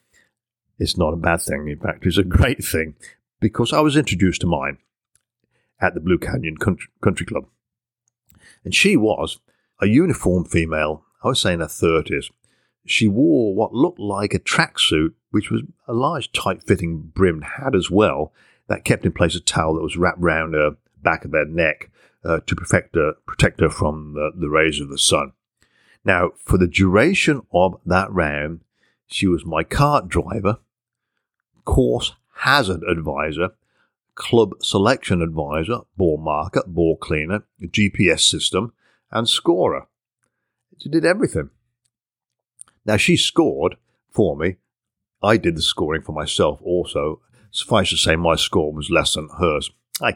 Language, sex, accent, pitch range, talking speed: English, male, British, 80-110 Hz, 160 wpm